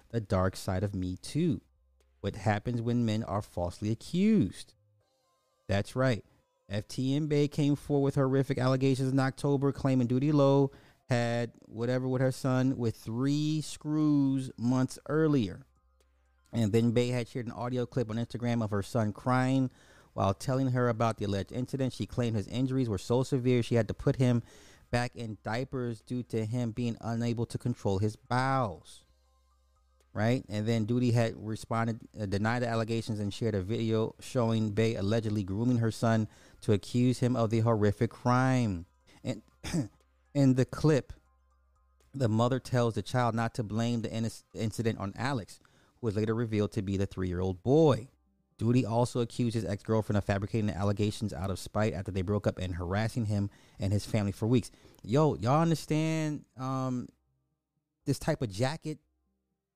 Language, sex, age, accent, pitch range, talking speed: English, male, 30-49, American, 105-130 Hz, 170 wpm